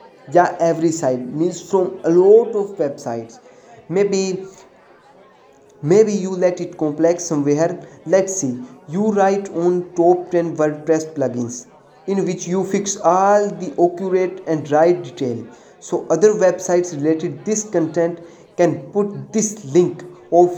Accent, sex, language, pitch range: Indian, male, English, 155-190 Hz